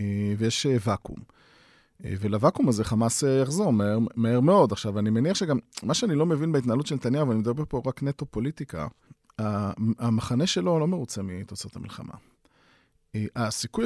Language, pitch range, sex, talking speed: Hebrew, 110-155 Hz, male, 140 wpm